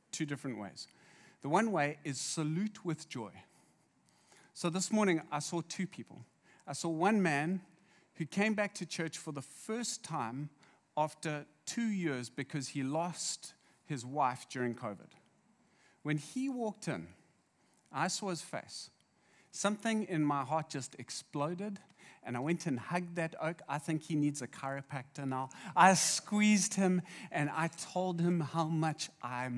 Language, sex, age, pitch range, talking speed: English, male, 40-59, 135-195 Hz, 160 wpm